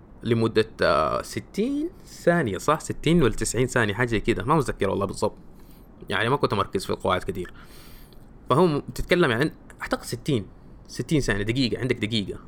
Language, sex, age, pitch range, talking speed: Arabic, male, 20-39, 110-145 Hz, 150 wpm